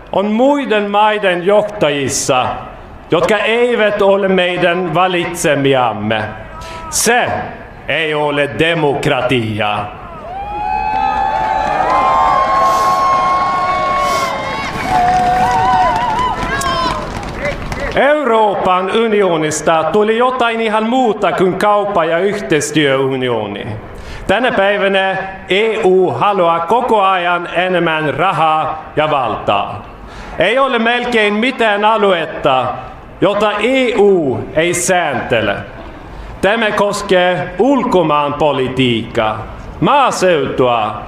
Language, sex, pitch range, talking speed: Finnish, male, 140-220 Hz, 65 wpm